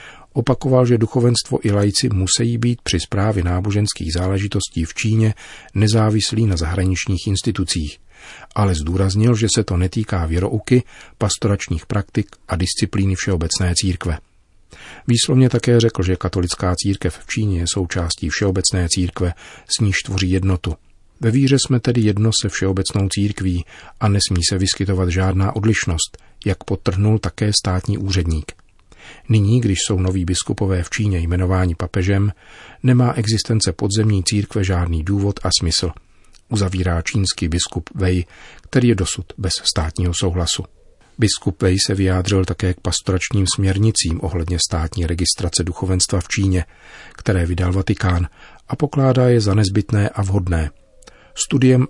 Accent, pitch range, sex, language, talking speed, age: native, 90-110 Hz, male, Czech, 135 wpm, 40-59